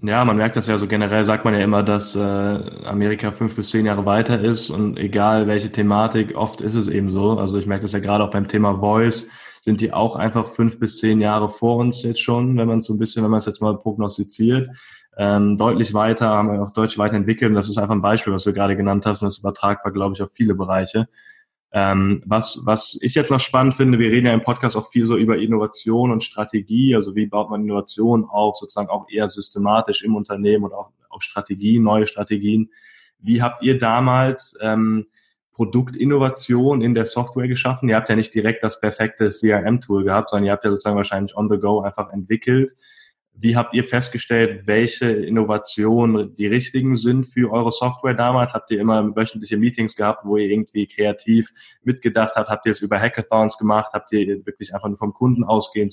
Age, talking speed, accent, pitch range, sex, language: 10-29, 210 wpm, German, 105-115 Hz, male, English